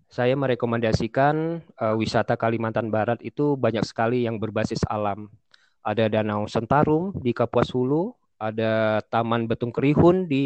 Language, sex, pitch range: Indonesian, male, 115-145 Hz